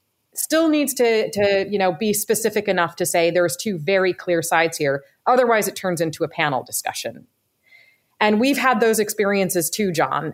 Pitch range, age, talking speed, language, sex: 155-205 Hz, 30-49, 180 wpm, English, female